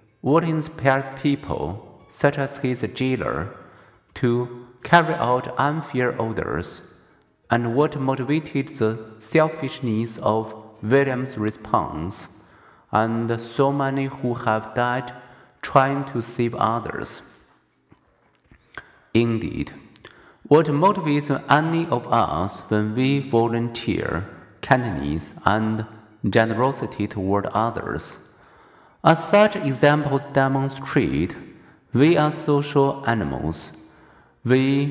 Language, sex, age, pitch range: Chinese, male, 50-69, 110-140 Hz